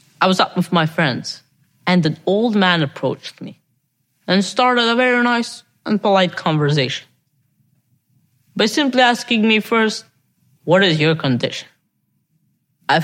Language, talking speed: English, 140 wpm